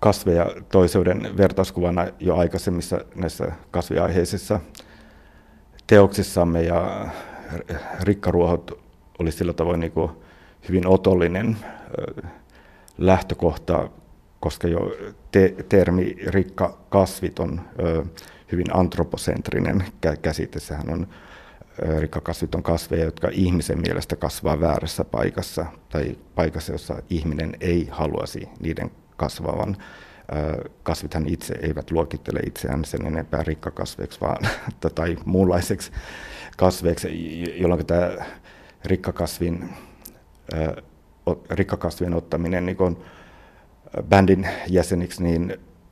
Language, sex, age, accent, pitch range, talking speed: Finnish, male, 60-79, native, 80-95 Hz, 85 wpm